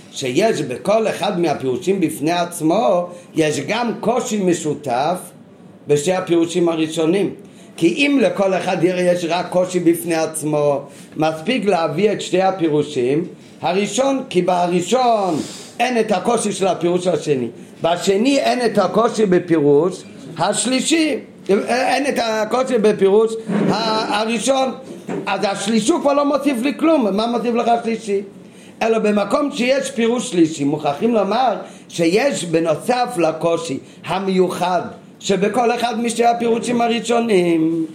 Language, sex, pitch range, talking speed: Hebrew, male, 175-225 Hz, 115 wpm